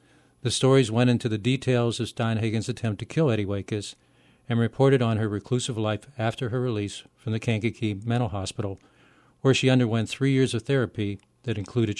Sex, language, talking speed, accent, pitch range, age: male, English, 180 wpm, American, 105-125 Hz, 50-69